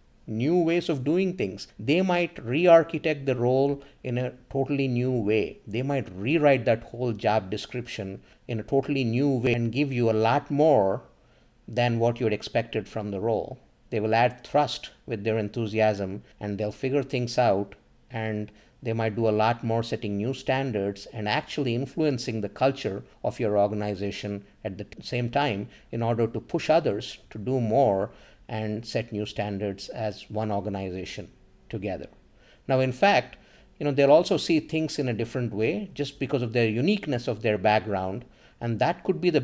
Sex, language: male, English